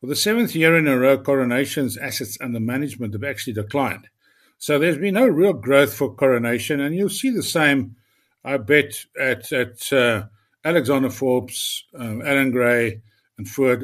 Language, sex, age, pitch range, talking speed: English, male, 60-79, 120-145 Hz, 180 wpm